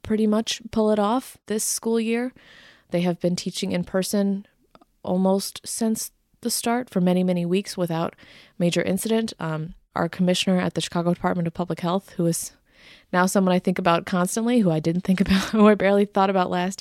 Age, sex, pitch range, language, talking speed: 20-39, female, 170-200 Hz, English, 195 wpm